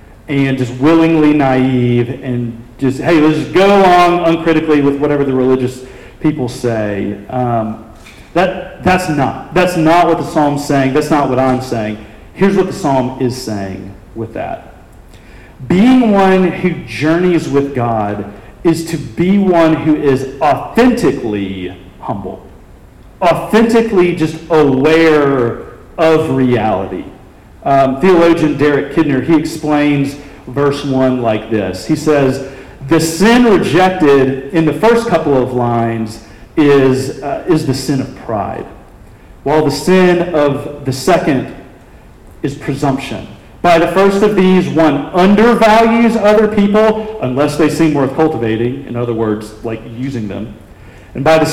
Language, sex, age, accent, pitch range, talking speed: English, male, 40-59, American, 120-165 Hz, 140 wpm